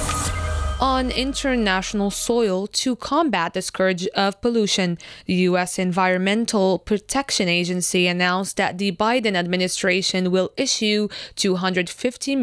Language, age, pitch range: French, 20-39, 185-235 Hz